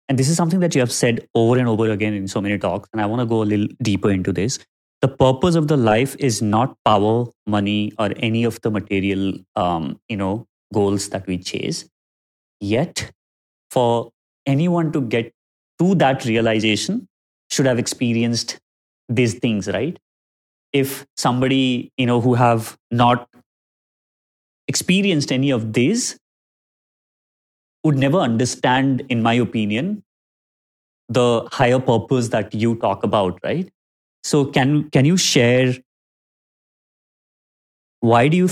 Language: English